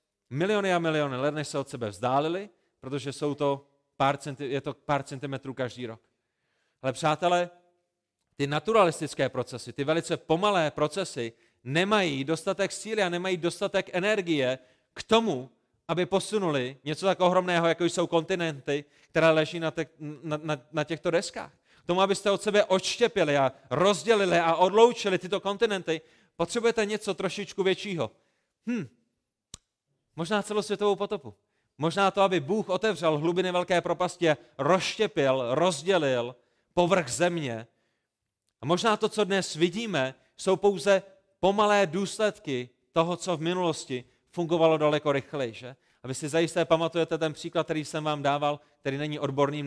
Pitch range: 145-190 Hz